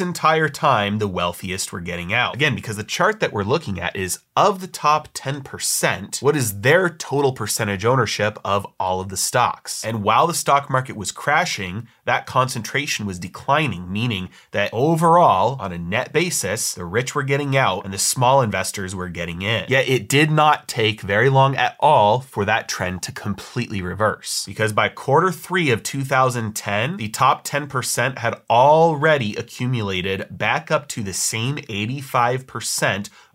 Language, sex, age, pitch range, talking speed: English, male, 30-49, 100-135 Hz, 170 wpm